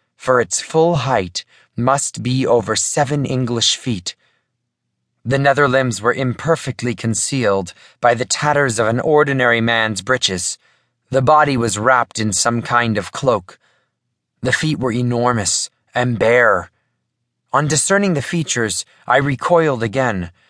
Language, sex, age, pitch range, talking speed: English, male, 30-49, 110-140 Hz, 135 wpm